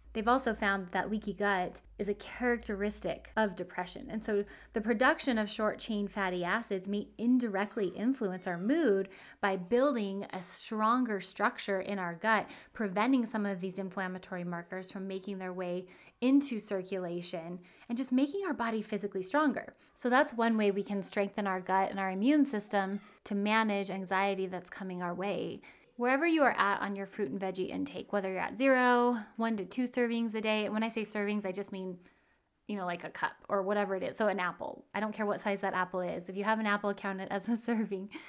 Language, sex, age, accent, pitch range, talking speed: English, female, 30-49, American, 190-235 Hz, 205 wpm